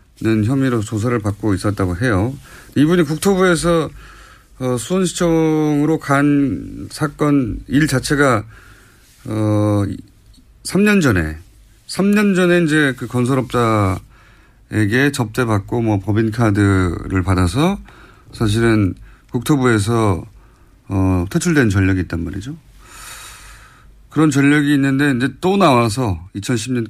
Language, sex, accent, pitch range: Korean, male, native, 105-145 Hz